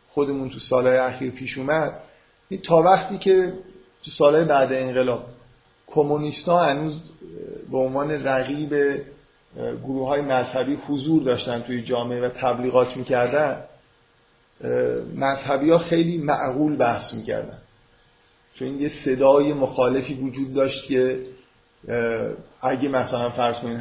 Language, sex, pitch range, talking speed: Persian, male, 125-145 Hz, 115 wpm